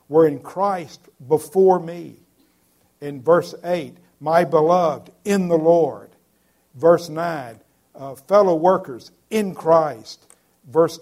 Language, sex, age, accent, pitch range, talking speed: English, male, 50-69, American, 115-170 Hz, 110 wpm